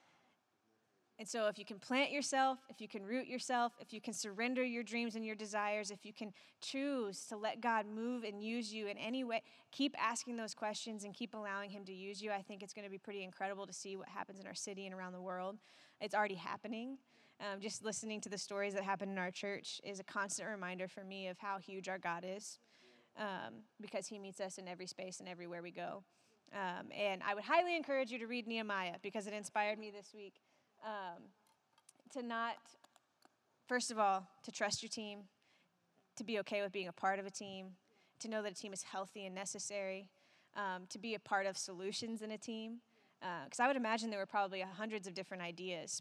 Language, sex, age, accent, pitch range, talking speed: English, female, 20-39, American, 195-225 Hz, 220 wpm